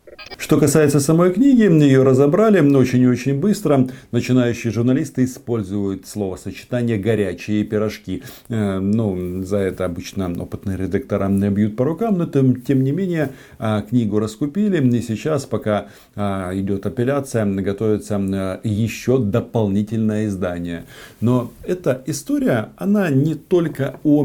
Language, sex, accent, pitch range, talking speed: Russian, male, native, 105-140 Hz, 130 wpm